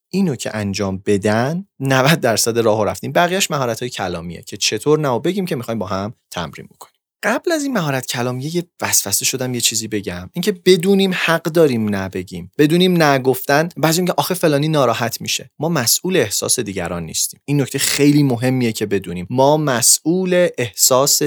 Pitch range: 110-160 Hz